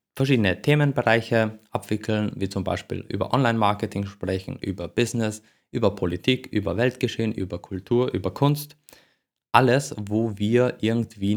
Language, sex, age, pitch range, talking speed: German, male, 20-39, 95-115 Hz, 120 wpm